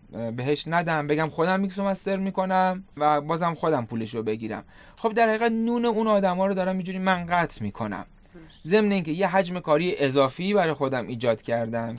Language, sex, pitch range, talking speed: Persian, male, 135-185 Hz, 195 wpm